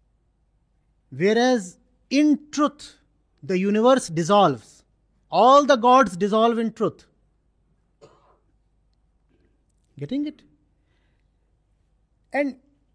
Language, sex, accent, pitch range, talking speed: English, male, Indian, 195-275 Hz, 70 wpm